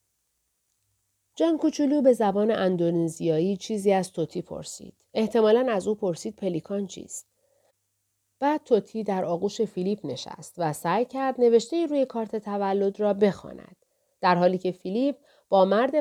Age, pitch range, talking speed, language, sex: 40-59, 170-245 Hz, 140 wpm, Persian, female